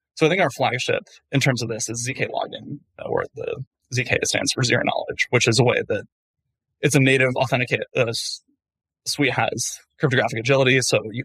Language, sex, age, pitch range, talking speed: English, male, 20-39, 120-150 Hz, 185 wpm